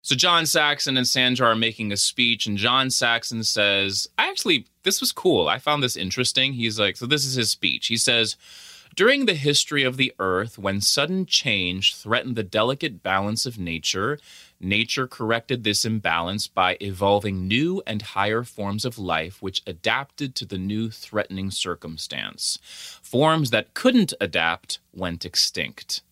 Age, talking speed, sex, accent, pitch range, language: 30-49, 165 wpm, male, American, 100-135 Hz, English